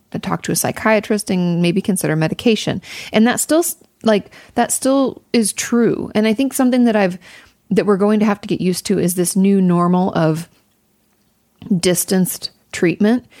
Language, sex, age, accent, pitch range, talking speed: English, female, 30-49, American, 170-210 Hz, 170 wpm